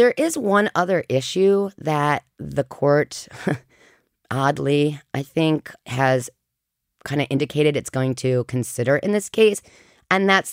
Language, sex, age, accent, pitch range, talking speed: English, female, 30-49, American, 125-155 Hz, 135 wpm